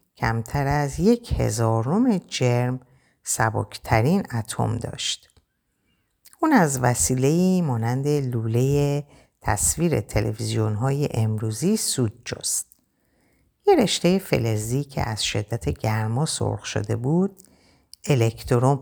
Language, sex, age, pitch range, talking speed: Persian, female, 50-69, 110-150 Hz, 95 wpm